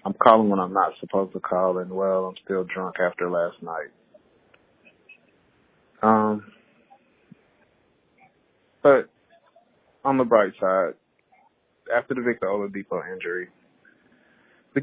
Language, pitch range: English, 95-120 Hz